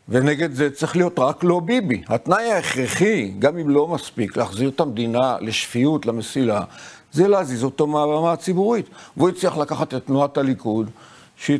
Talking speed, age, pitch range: 155 wpm, 50-69, 125-170 Hz